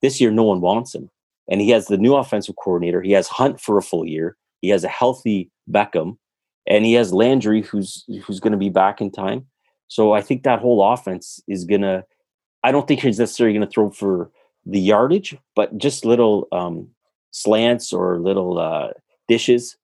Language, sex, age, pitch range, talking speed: English, male, 30-49, 90-115 Hz, 200 wpm